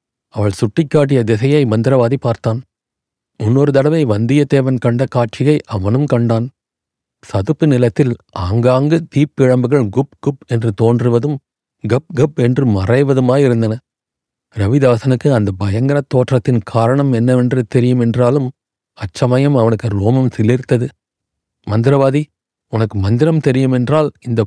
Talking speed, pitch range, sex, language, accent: 100 wpm, 115-140 Hz, male, Tamil, native